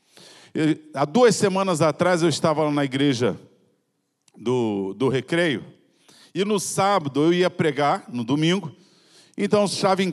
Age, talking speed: 50-69, 140 wpm